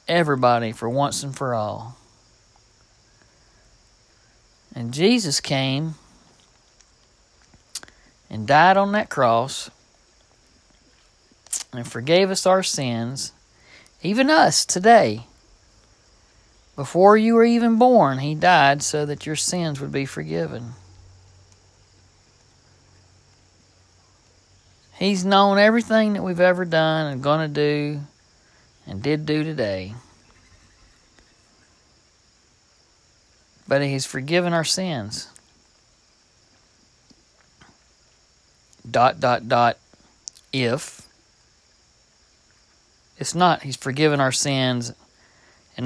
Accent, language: American, English